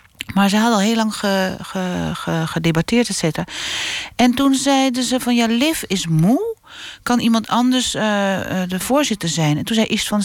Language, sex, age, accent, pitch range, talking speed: Dutch, female, 40-59, Dutch, 150-225 Hz, 185 wpm